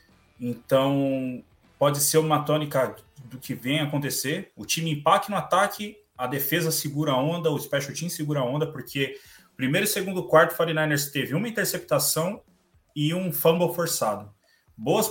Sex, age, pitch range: male, 20-39, 125-160 Hz